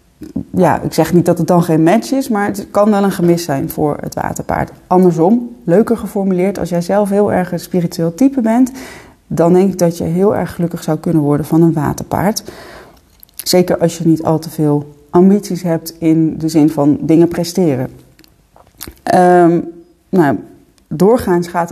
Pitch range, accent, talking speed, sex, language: 170-205 Hz, Dutch, 175 wpm, female, Dutch